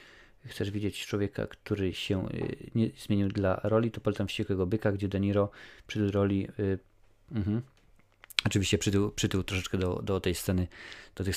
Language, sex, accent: Polish, male, native